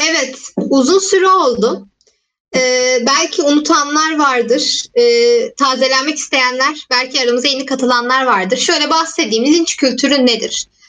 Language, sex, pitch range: Turkish, female, 245-345 Hz